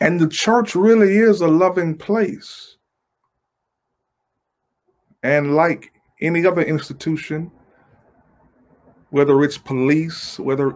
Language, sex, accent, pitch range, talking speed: English, male, American, 130-170 Hz, 95 wpm